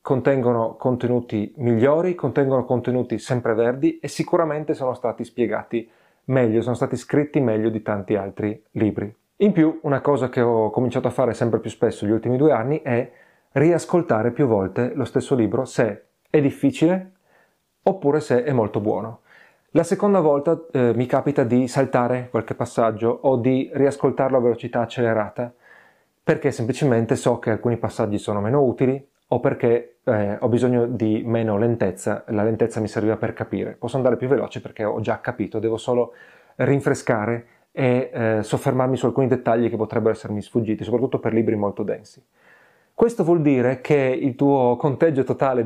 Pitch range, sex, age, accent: 115-140 Hz, male, 30-49, native